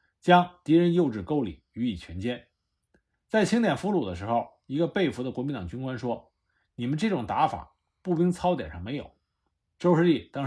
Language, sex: Chinese, male